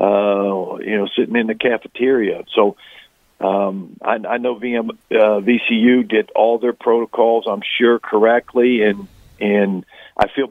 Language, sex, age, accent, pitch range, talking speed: English, male, 50-69, American, 105-125 Hz, 150 wpm